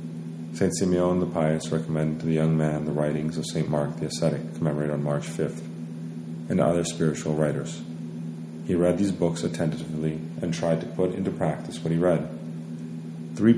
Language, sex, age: English, male, 30-49